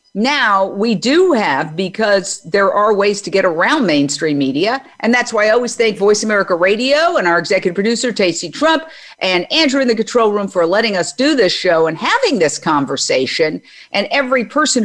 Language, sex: English, female